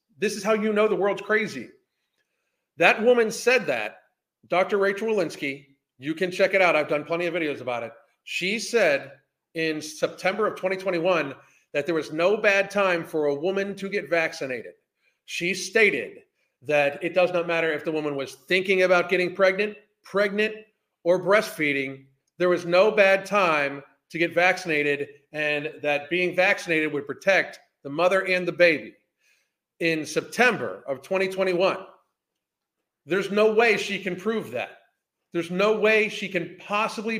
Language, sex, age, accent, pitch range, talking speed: English, male, 40-59, American, 160-205 Hz, 160 wpm